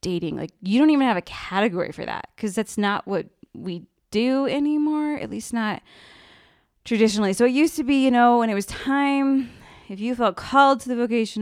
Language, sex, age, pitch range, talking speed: English, female, 20-39, 185-240 Hz, 205 wpm